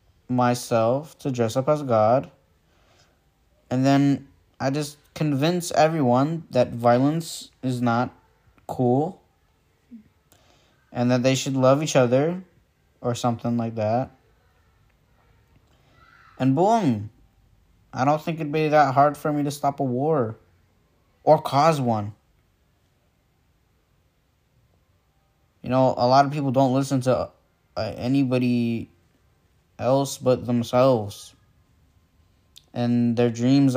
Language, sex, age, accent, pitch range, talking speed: English, male, 10-29, American, 110-135 Hz, 110 wpm